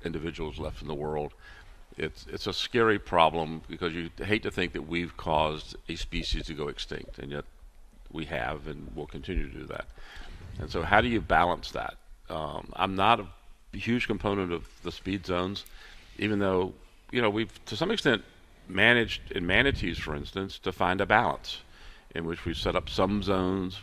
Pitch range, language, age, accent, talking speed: 80-100 Hz, English, 50-69, American, 190 wpm